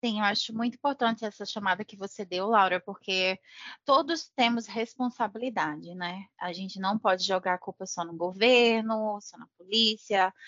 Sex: female